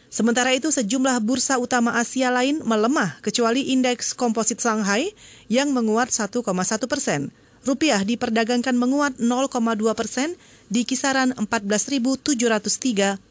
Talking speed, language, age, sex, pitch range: 110 wpm, Indonesian, 30-49, female, 205-265 Hz